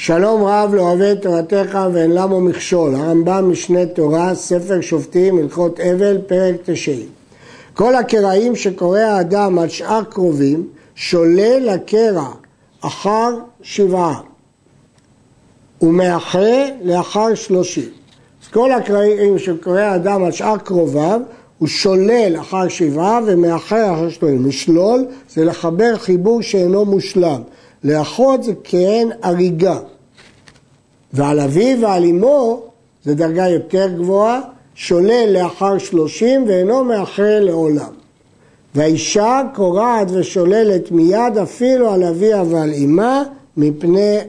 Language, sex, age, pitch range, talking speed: Hebrew, male, 60-79, 170-215 Hz, 110 wpm